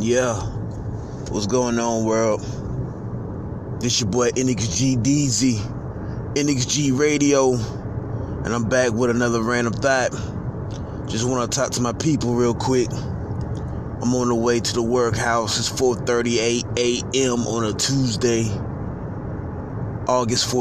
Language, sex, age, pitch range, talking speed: English, male, 20-39, 110-125 Hz, 120 wpm